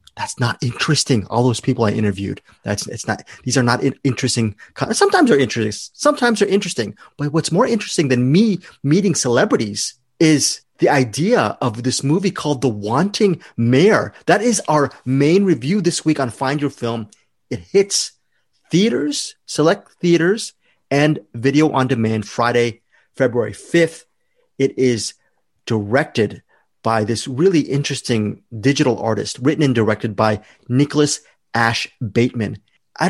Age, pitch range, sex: 30-49, 125-185 Hz, male